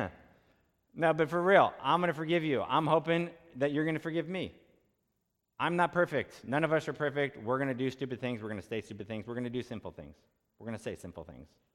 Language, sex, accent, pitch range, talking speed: English, male, American, 120-145 Hz, 250 wpm